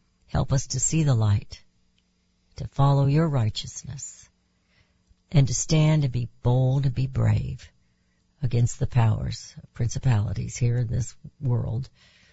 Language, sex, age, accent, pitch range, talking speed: English, female, 60-79, American, 110-150 Hz, 130 wpm